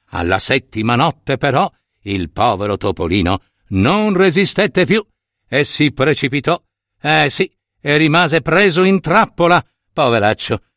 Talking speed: 115 wpm